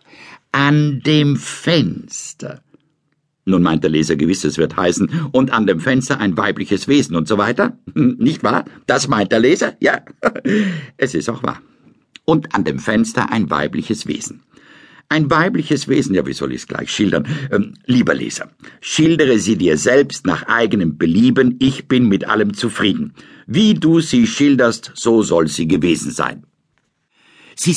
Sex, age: male, 60-79